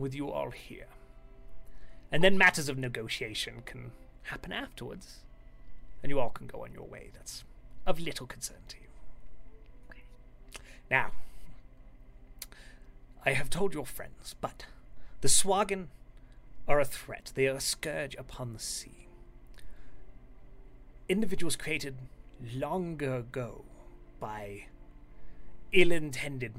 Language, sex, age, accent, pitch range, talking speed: English, male, 30-49, British, 110-150 Hz, 115 wpm